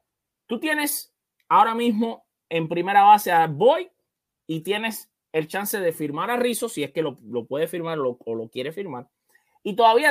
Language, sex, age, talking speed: English, male, 20-39, 185 wpm